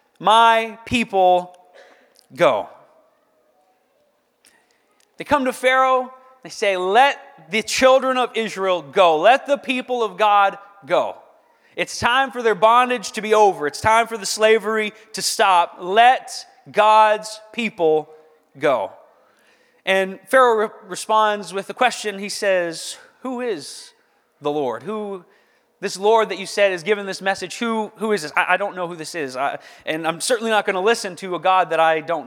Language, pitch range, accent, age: English, 185-235 Hz, American, 30-49